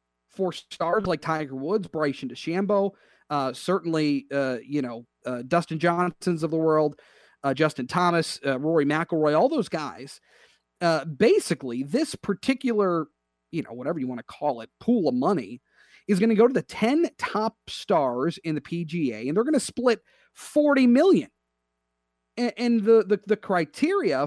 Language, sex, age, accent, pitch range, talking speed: English, male, 40-59, American, 135-185 Hz, 165 wpm